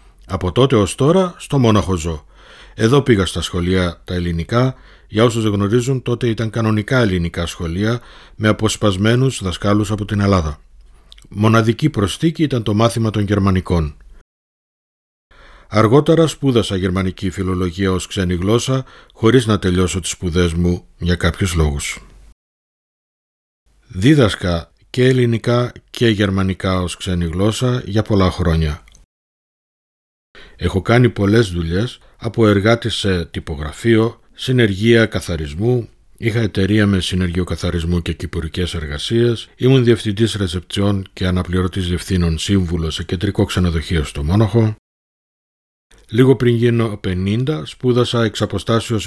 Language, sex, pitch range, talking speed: Greek, male, 90-115 Hz, 120 wpm